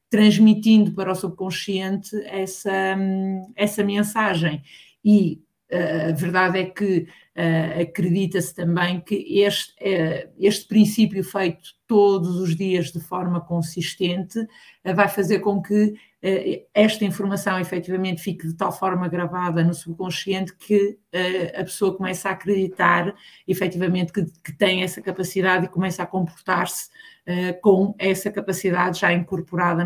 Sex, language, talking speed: female, Portuguese, 125 wpm